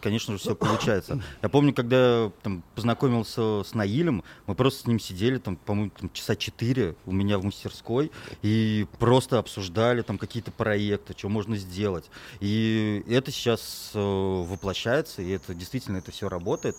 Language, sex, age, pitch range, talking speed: Russian, male, 30-49, 95-125 Hz, 155 wpm